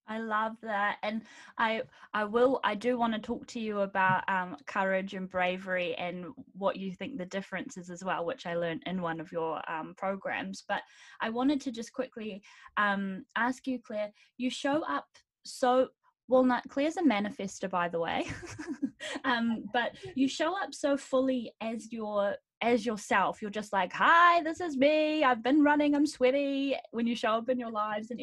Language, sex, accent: English, female, Australian